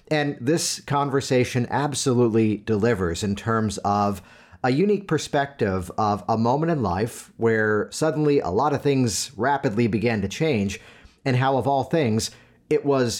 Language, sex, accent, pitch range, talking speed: English, male, American, 105-140 Hz, 150 wpm